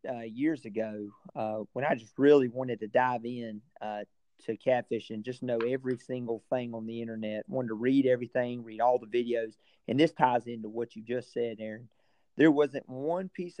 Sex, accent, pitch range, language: male, American, 115-145 Hz, English